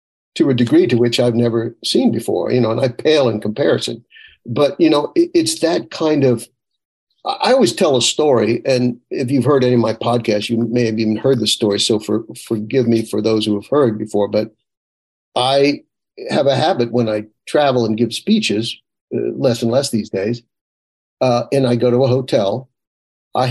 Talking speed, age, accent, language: 200 wpm, 60-79, American, English